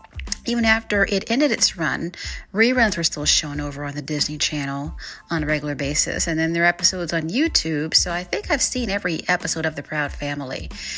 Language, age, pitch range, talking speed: English, 40-59, 160-210 Hz, 200 wpm